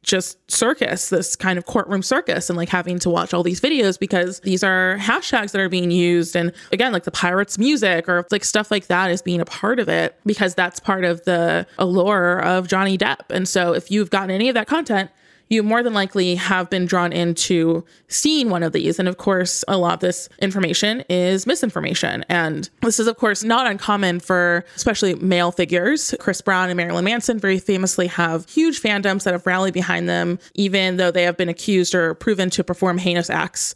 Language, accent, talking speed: English, American, 210 wpm